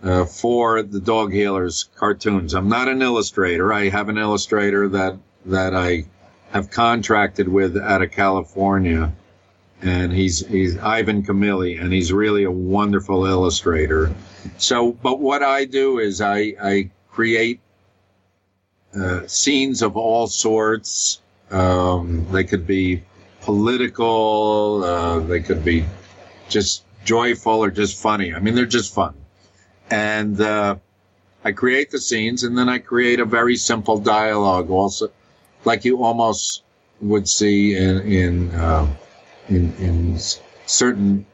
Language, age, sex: English, 50-69, male